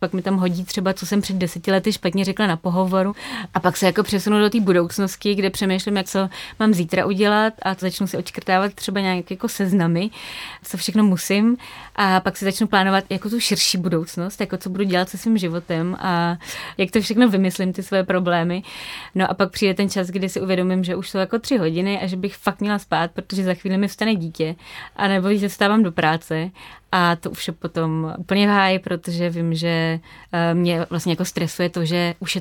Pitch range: 175-205 Hz